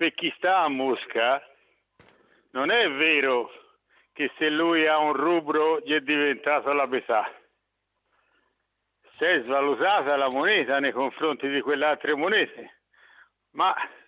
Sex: male